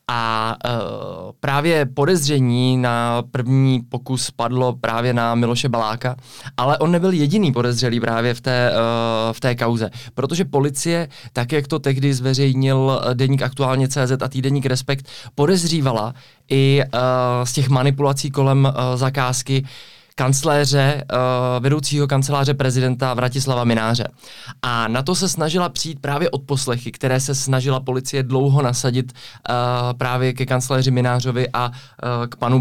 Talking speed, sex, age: 140 wpm, male, 20-39